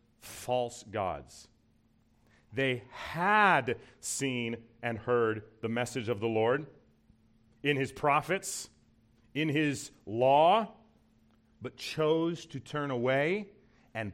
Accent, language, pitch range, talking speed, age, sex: American, English, 105-150 Hz, 100 wpm, 40-59, male